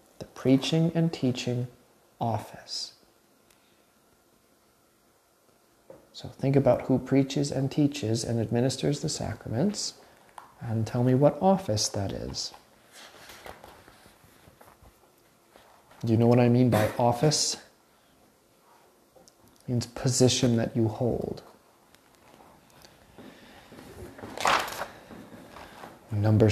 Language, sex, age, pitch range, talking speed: English, male, 40-59, 120-155 Hz, 85 wpm